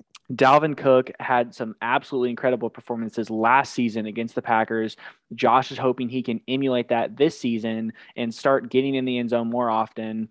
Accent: American